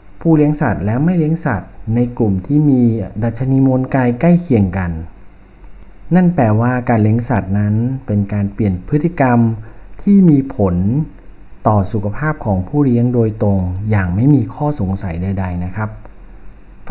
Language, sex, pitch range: Thai, male, 100-135 Hz